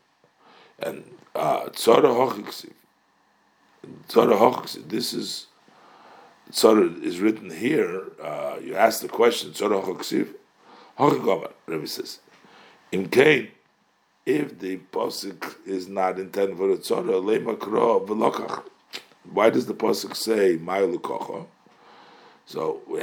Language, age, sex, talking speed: English, 50-69, male, 110 wpm